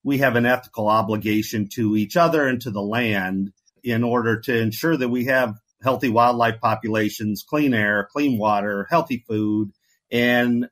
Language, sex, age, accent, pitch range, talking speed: English, male, 50-69, American, 110-130 Hz, 160 wpm